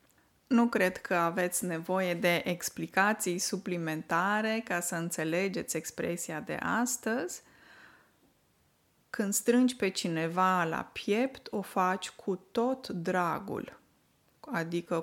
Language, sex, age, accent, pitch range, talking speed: Romanian, female, 20-39, native, 175-230 Hz, 105 wpm